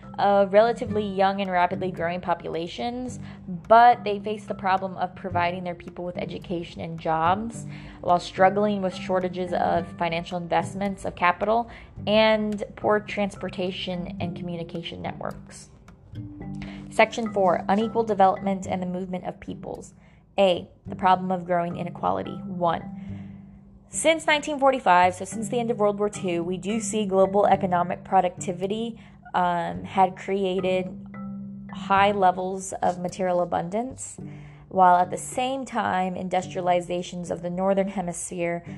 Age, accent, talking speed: 20-39, American, 130 wpm